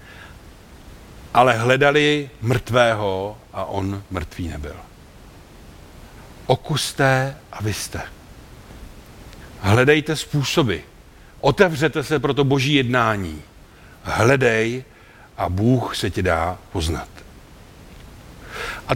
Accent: native